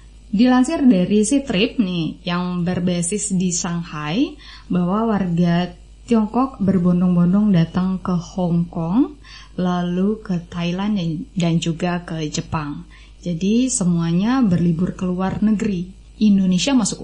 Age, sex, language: 20-39, female, Indonesian